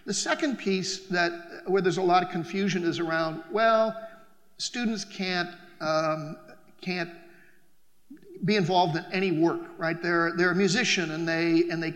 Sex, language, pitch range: male, English, 170-190 Hz